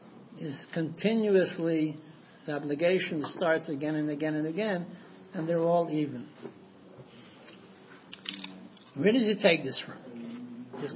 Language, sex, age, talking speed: English, male, 60-79, 115 wpm